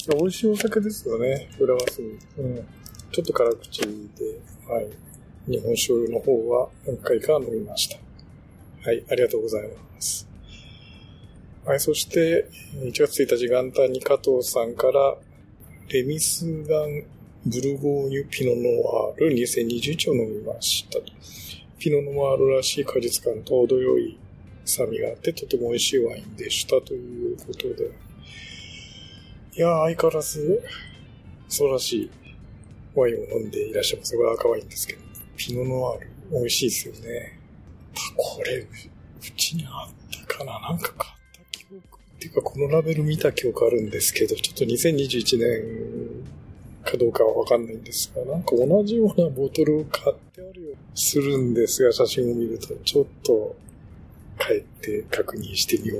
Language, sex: Japanese, male